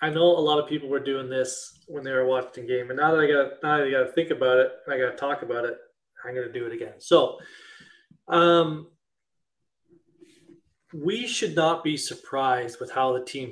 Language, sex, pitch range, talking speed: English, male, 130-165 Hz, 210 wpm